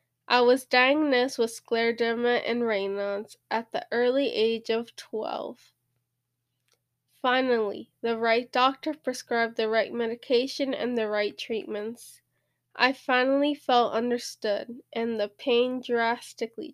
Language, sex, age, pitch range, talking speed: English, female, 10-29, 215-255 Hz, 120 wpm